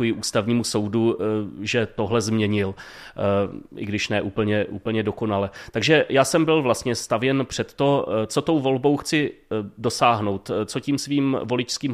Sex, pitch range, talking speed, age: male, 110-135 Hz, 140 wpm, 30-49